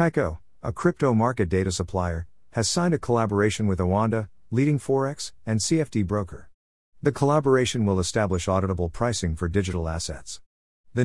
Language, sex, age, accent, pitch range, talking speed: English, male, 50-69, American, 90-120 Hz, 145 wpm